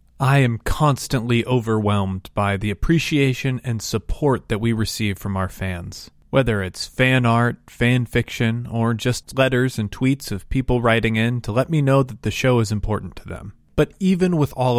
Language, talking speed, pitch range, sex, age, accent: English, 185 wpm, 105-140 Hz, male, 20-39, American